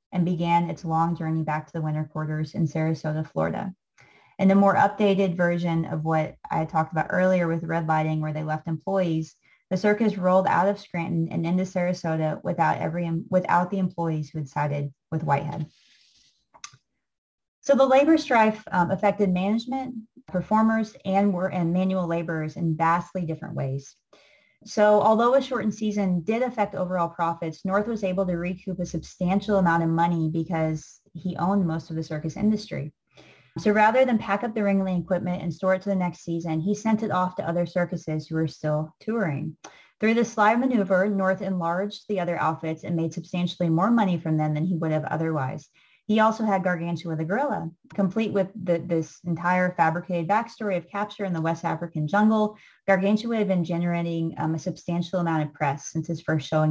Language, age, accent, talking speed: English, 20-39, American, 185 wpm